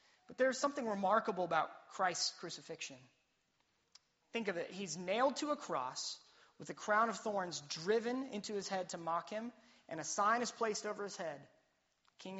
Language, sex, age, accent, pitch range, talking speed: English, male, 30-49, American, 170-220 Hz, 175 wpm